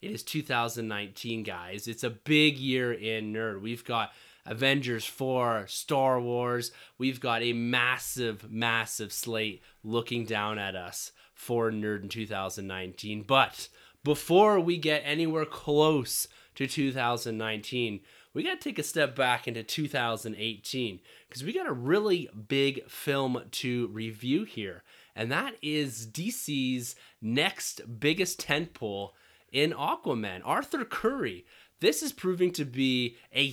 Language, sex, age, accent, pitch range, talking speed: English, male, 20-39, American, 110-140 Hz, 130 wpm